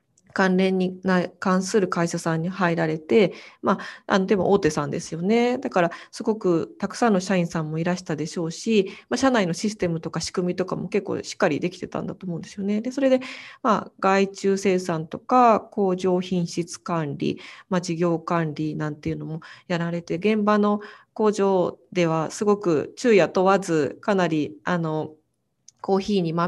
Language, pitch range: Japanese, 170-205 Hz